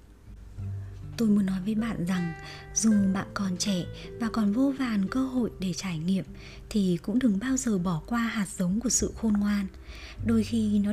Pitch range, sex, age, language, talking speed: 170-230 Hz, male, 20-39, Vietnamese, 190 wpm